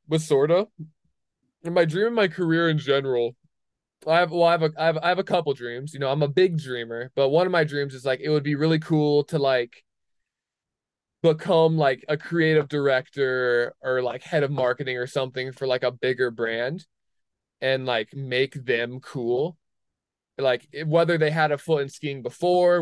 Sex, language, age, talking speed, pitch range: male, English, 20-39, 195 wpm, 130-165 Hz